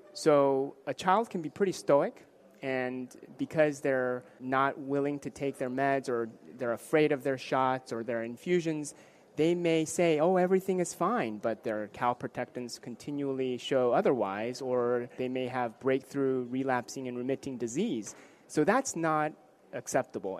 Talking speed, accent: 150 wpm, American